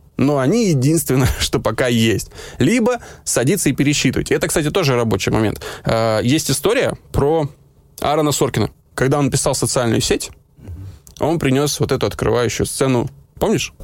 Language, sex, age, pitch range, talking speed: Russian, male, 20-39, 110-145 Hz, 140 wpm